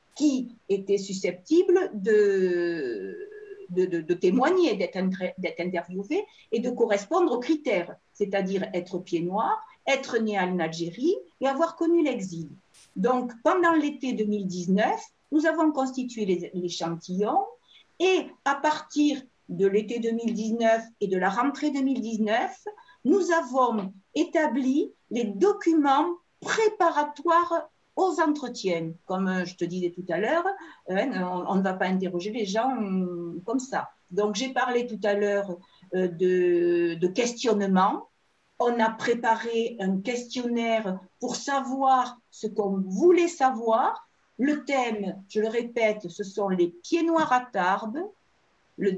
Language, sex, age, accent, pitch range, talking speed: French, female, 50-69, French, 195-315 Hz, 130 wpm